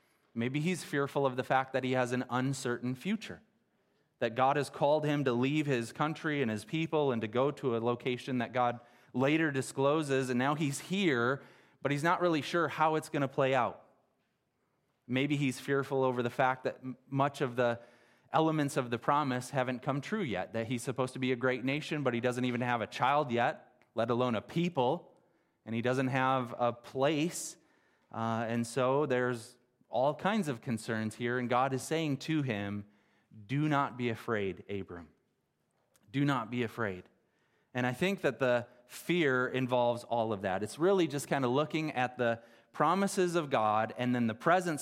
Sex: male